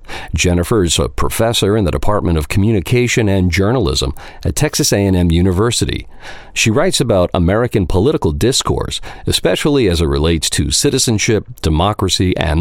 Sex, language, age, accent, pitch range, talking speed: male, English, 50-69, American, 85-115 Hz, 140 wpm